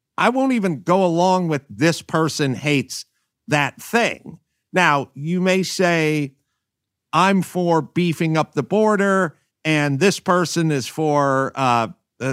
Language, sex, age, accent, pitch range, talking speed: English, male, 50-69, American, 130-180 Hz, 135 wpm